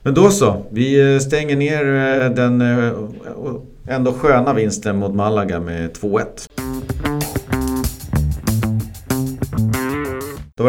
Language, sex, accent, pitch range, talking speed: Swedish, male, native, 95-125 Hz, 95 wpm